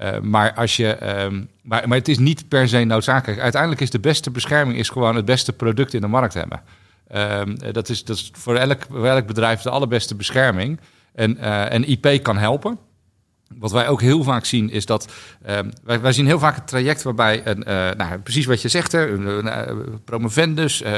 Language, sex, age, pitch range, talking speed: Dutch, male, 50-69, 110-135 Hz, 185 wpm